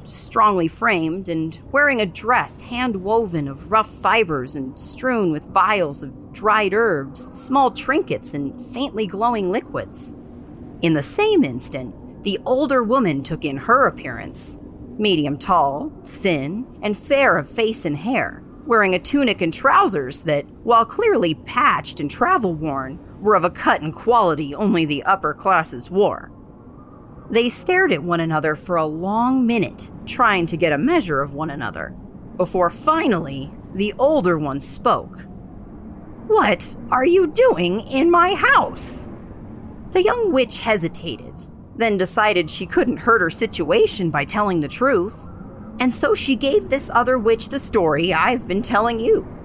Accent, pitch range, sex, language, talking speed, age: American, 165-260 Hz, female, English, 150 wpm, 40-59